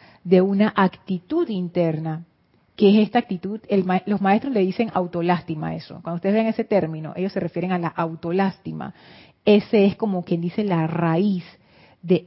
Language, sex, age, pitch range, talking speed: Spanish, female, 30-49, 175-205 Hz, 175 wpm